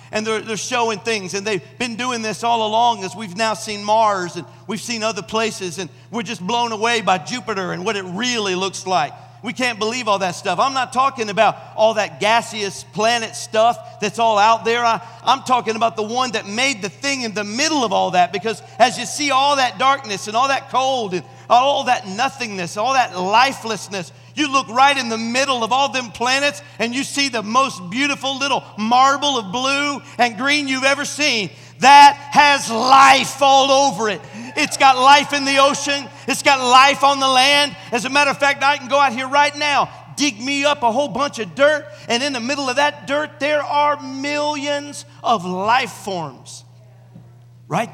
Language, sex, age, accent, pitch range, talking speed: English, male, 50-69, American, 190-270 Hz, 205 wpm